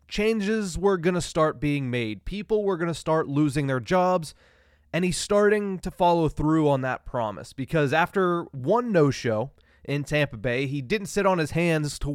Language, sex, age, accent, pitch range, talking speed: English, male, 20-39, American, 140-185 Hz, 190 wpm